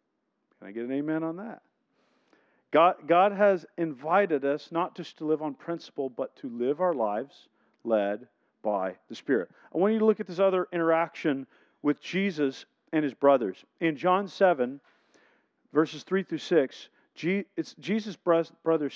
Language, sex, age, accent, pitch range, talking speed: English, male, 40-59, American, 150-195 Hz, 155 wpm